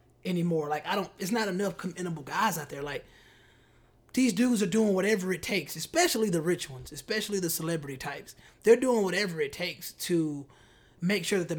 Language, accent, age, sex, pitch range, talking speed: English, American, 20-39, male, 160-210 Hz, 190 wpm